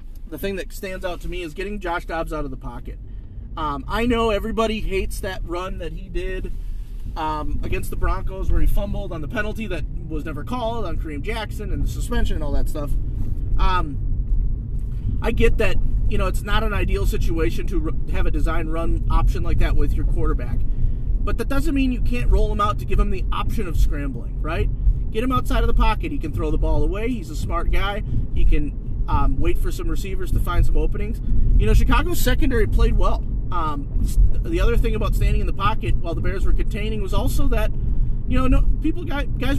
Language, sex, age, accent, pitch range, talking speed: English, male, 30-49, American, 105-135 Hz, 215 wpm